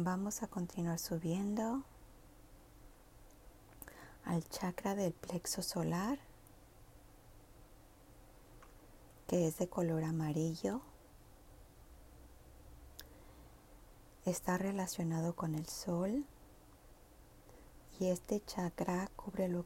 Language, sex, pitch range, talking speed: English, female, 160-185 Hz, 75 wpm